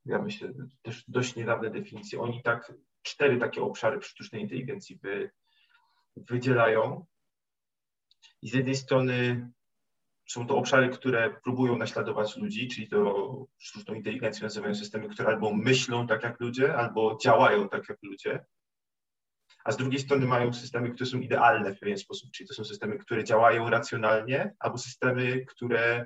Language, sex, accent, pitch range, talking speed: Polish, male, native, 120-140 Hz, 155 wpm